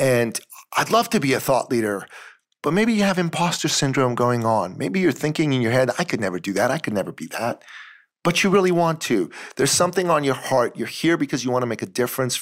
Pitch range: 125-170 Hz